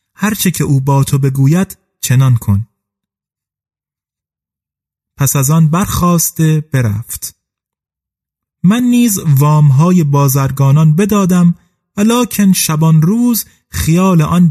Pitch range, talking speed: 140-185 Hz, 100 wpm